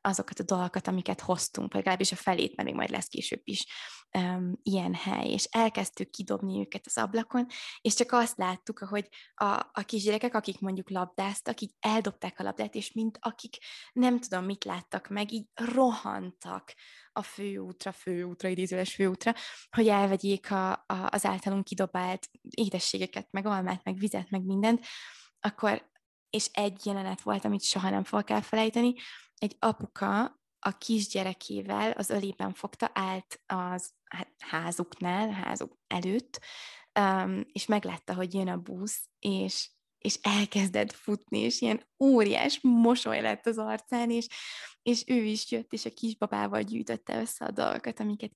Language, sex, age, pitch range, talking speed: Hungarian, female, 20-39, 185-230 Hz, 150 wpm